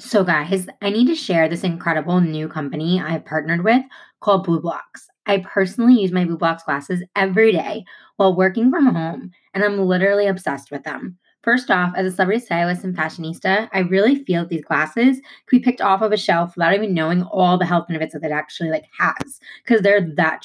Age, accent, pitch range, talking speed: 20-39, American, 175-230 Hz, 210 wpm